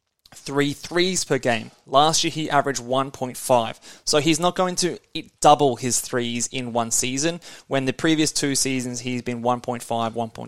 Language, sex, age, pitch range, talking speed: English, male, 20-39, 125-160 Hz, 165 wpm